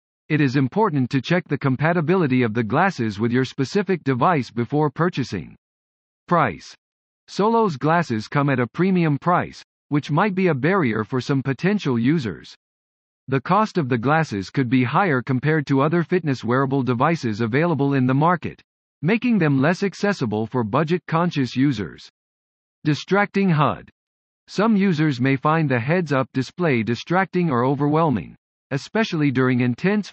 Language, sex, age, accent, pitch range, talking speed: English, male, 50-69, American, 125-175 Hz, 145 wpm